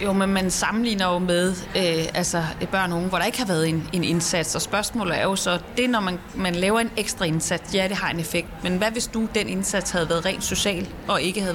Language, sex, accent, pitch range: Danish, female, native, 180-220 Hz